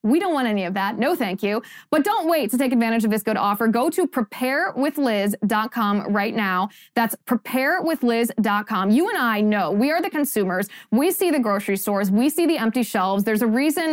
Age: 20-39